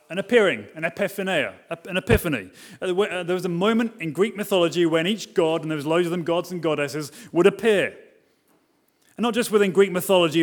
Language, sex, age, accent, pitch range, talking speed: English, male, 30-49, British, 170-220 Hz, 185 wpm